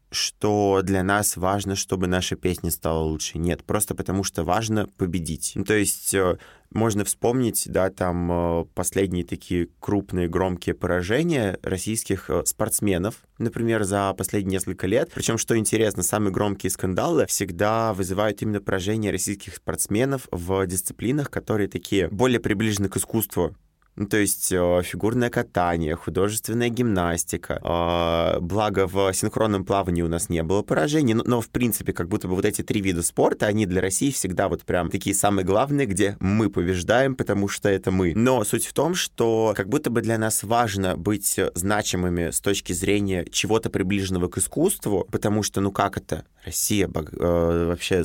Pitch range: 90-105 Hz